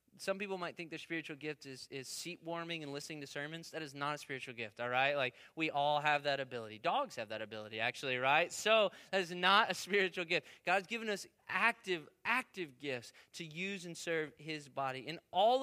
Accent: American